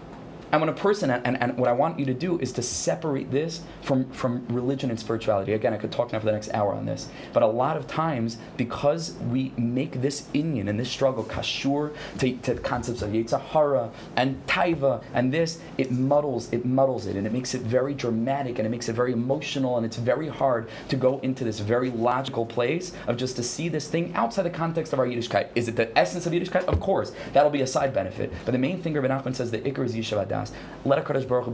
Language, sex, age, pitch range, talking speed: English, male, 20-39, 115-140 Hz, 240 wpm